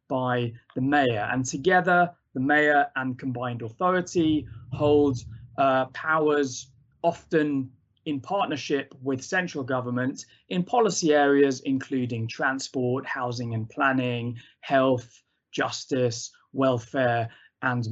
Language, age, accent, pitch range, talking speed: English, 20-39, British, 120-145 Hz, 105 wpm